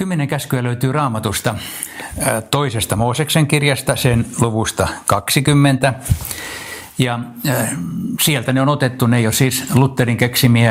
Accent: native